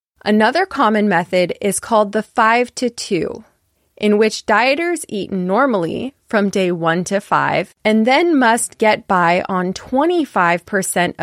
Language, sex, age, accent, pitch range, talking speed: English, female, 20-39, American, 180-250 Hz, 140 wpm